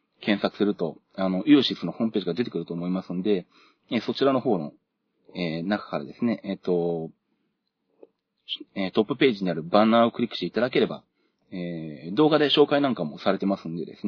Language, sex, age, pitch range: Japanese, male, 30-49, 90-115 Hz